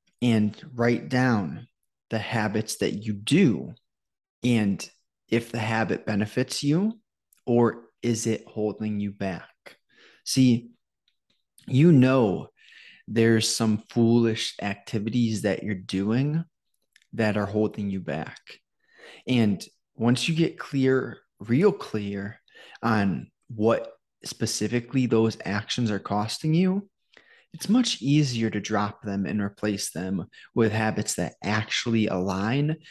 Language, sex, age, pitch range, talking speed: English, male, 20-39, 105-125 Hz, 115 wpm